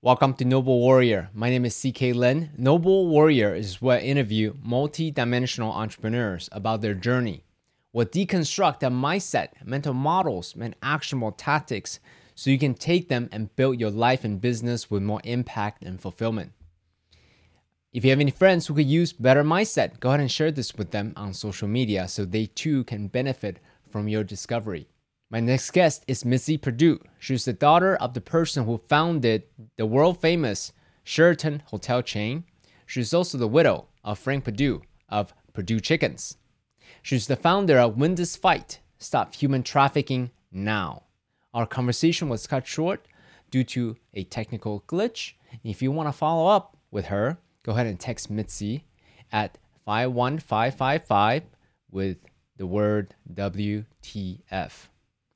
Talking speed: 155 wpm